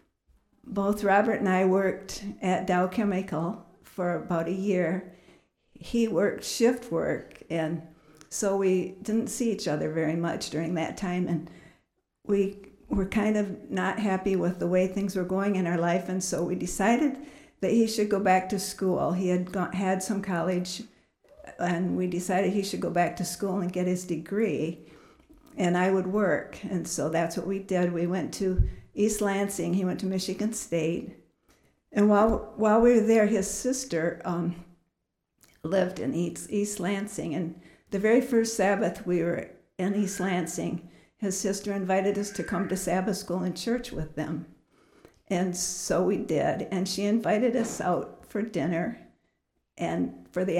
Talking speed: 170 wpm